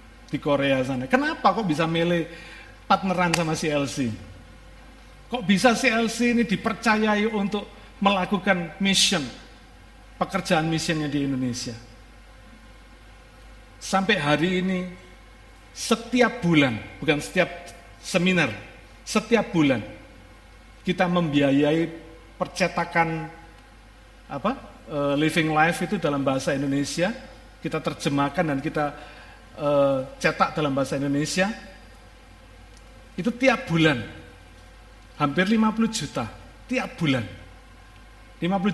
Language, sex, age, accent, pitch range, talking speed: Indonesian, male, 50-69, native, 120-185 Hz, 95 wpm